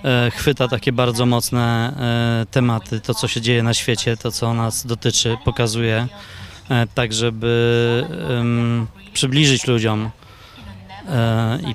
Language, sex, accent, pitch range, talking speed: Polish, male, native, 120-140 Hz, 105 wpm